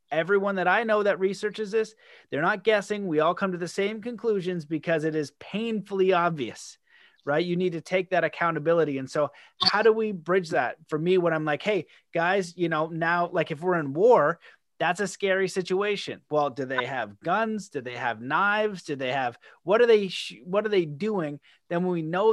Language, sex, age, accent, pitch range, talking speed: English, male, 30-49, American, 150-200 Hz, 205 wpm